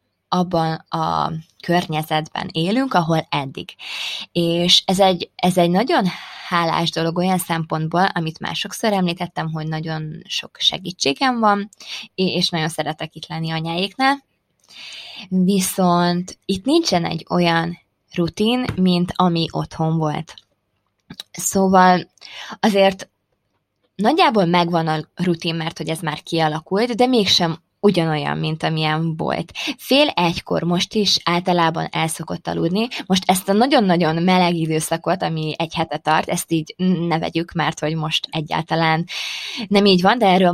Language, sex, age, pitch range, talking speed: Hungarian, female, 20-39, 160-195 Hz, 130 wpm